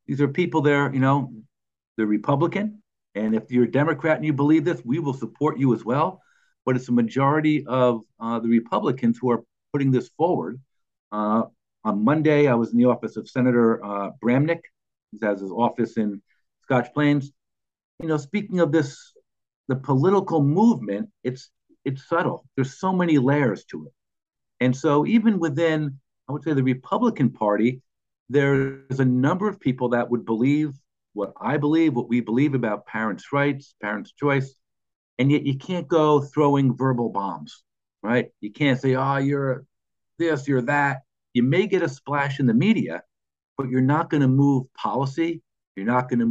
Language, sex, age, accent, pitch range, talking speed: English, male, 50-69, American, 120-150 Hz, 180 wpm